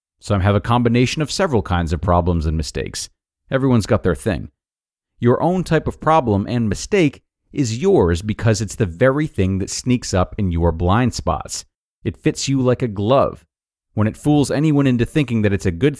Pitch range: 95-125 Hz